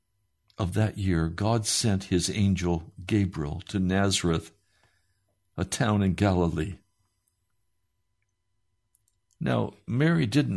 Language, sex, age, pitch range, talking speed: English, male, 60-79, 90-115 Hz, 95 wpm